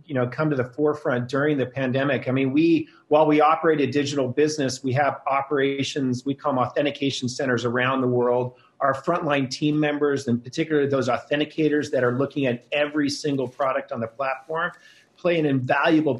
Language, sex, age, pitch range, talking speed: English, male, 40-59, 130-150 Hz, 185 wpm